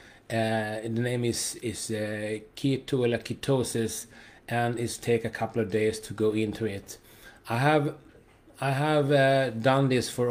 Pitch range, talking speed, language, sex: 110-120 Hz, 165 wpm, English, male